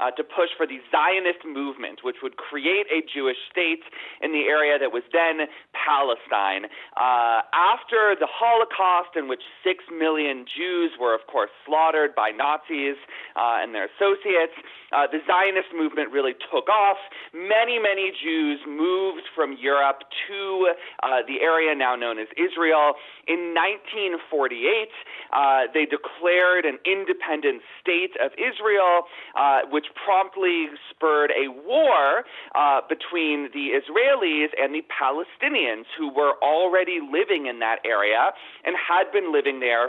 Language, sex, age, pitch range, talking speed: English, male, 30-49, 145-220 Hz, 145 wpm